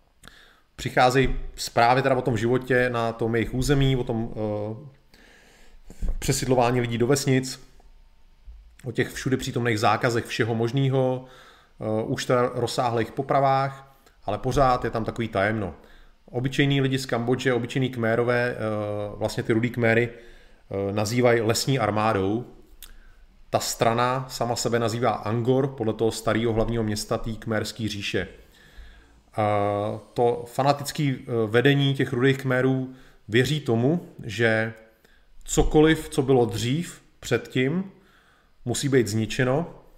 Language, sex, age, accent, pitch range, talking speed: Czech, male, 30-49, native, 115-135 Hz, 120 wpm